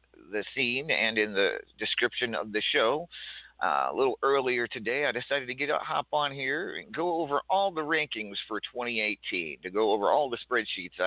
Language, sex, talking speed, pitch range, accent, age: English, male, 195 wpm, 90-125 Hz, American, 50-69